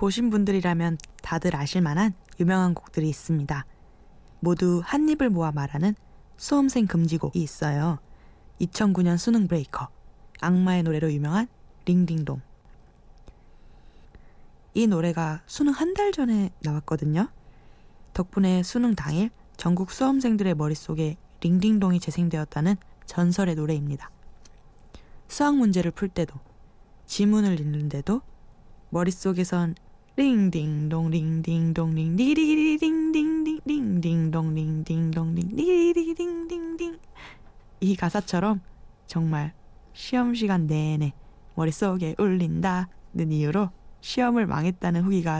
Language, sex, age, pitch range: Korean, female, 20-39, 165-220 Hz